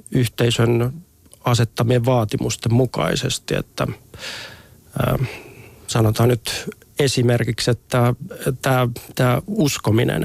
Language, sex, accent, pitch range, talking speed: Finnish, male, native, 115-125 Hz, 70 wpm